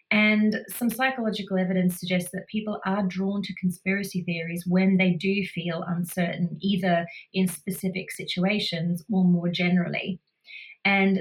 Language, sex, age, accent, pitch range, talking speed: English, female, 30-49, Australian, 175-190 Hz, 135 wpm